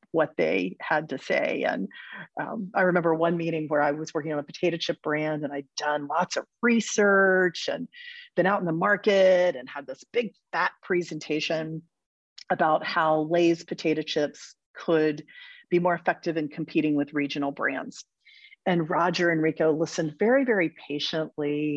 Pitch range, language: 155-215 Hz, English